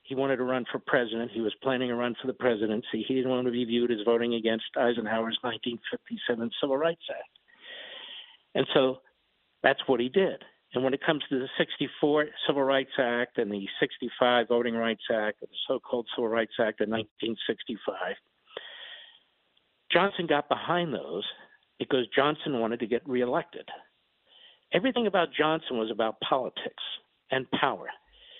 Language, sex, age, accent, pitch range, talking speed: English, male, 60-79, American, 120-160 Hz, 160 wpm